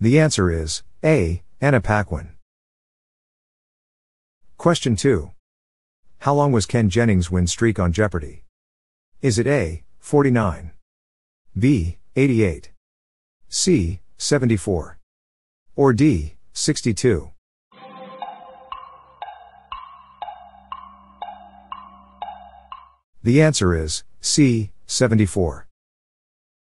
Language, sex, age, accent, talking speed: English, male, 50-69, American, 75 wpm